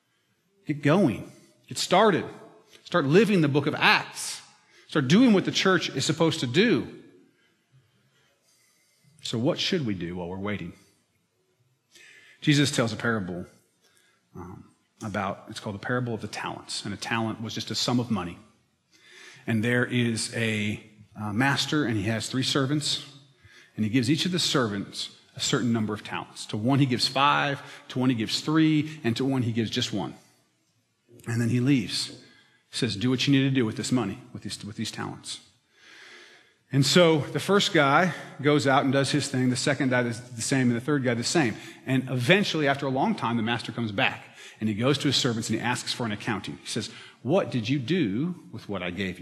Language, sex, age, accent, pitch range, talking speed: English, male, 40-59, American, 110-140 Hz, 200 wpm